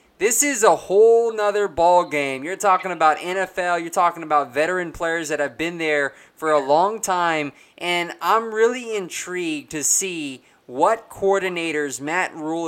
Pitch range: 155-195 Hz